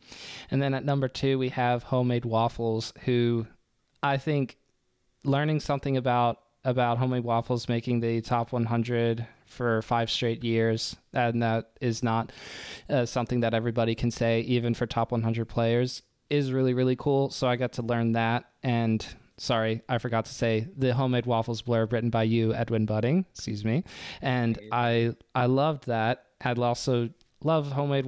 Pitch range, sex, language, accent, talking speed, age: 115-130 Hz, male, English, American, 165 wpm, 20-39